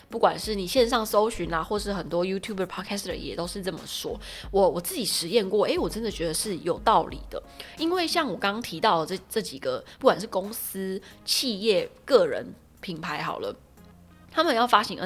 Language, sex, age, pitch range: Chinese, female, 20-39, 175-235 Hz